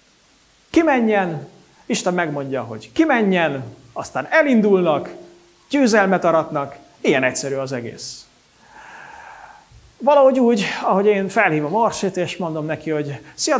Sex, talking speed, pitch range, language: male, 105 wpm, 160-255 Hz, English